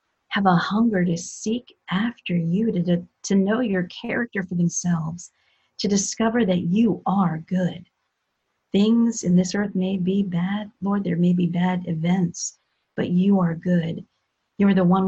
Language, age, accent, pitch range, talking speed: English, 40-59, American, 175-200 Hz, 165 wpm